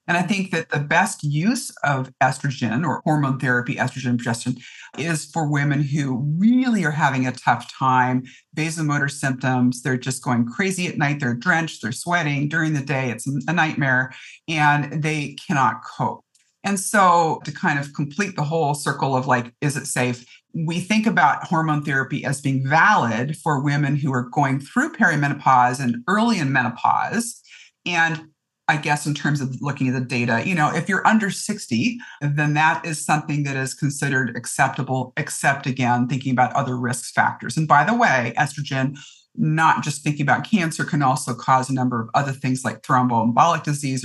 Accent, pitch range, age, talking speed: American, 130-160 Hz, 50-69, 180 wpm